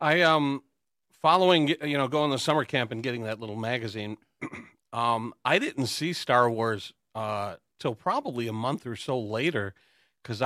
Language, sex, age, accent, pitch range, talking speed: English, male, 40-59, American, 105-140 Hz, 170 wpm